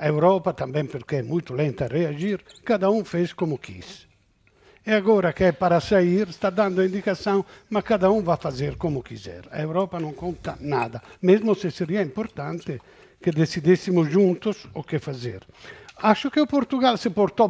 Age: 60-79